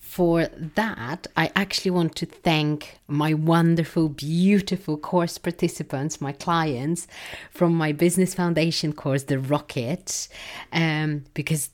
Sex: female